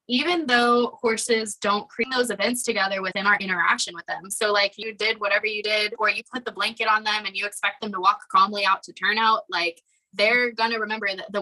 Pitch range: 185-220 Hz